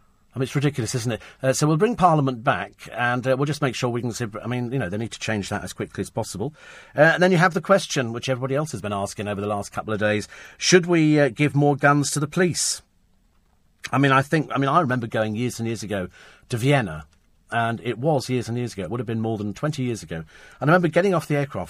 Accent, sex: British, male